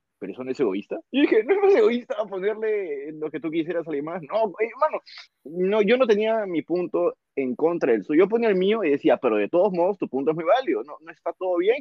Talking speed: 265 wpm